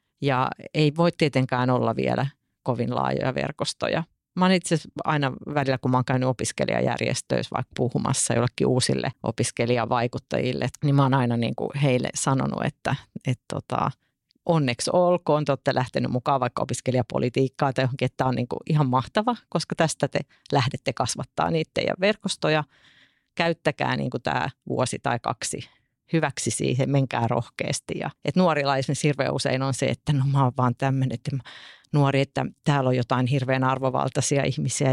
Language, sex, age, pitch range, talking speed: Finnish, female, 40-59, 130-150 Hz, 150 wpm